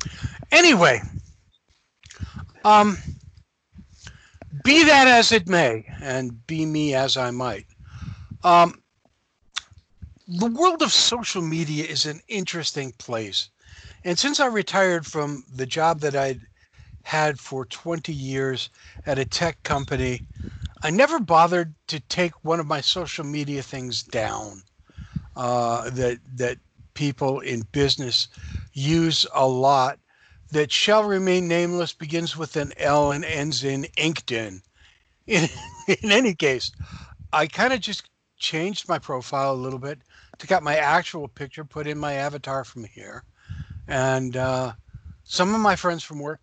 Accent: American